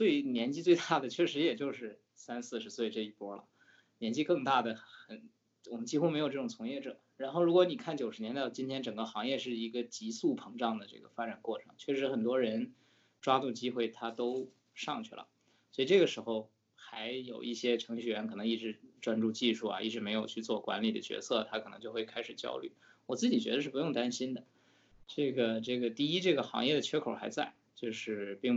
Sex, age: male, 20-39